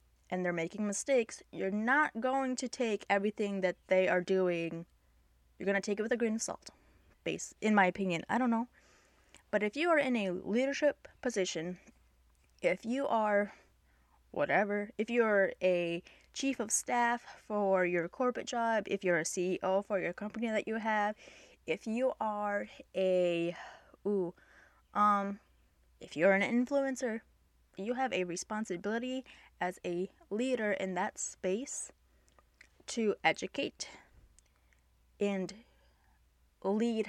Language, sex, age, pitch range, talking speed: English, female, 10-29, 175-230 Hz, 140 wpm